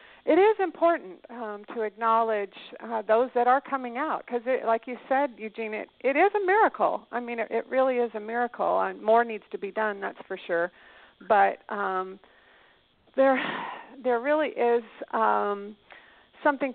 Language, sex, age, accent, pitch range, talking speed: English, female, 50-69, American, 200-245 Hz, 170 wpm